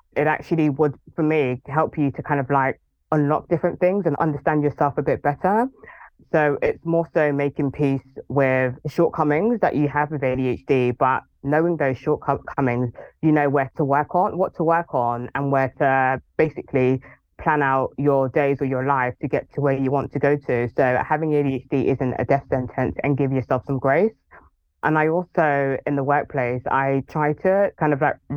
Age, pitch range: 20-39, 135-155 Hz